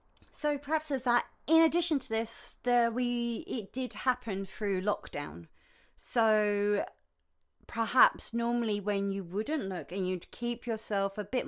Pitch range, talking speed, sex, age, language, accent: 200-250 Hz, 145 wpm, female, 30-49, English, British